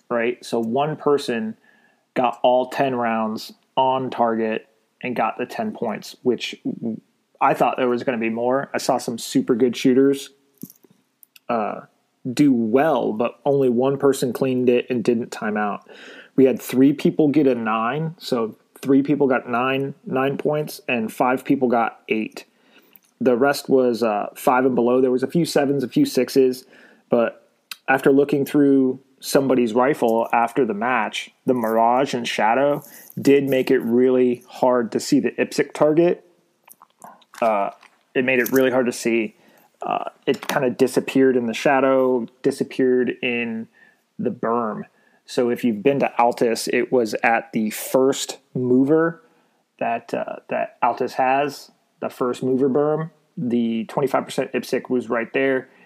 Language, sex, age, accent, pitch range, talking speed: English, male, 30-49, American, 120-140 Hz, 160 wpm